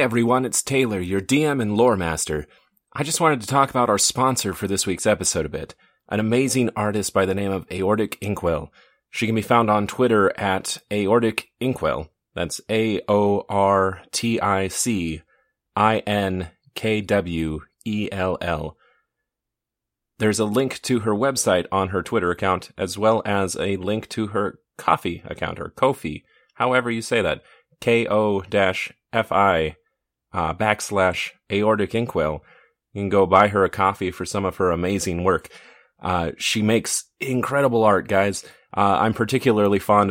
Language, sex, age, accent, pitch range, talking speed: English, male, 30-49, American, 95-110 Hz, 160 wpm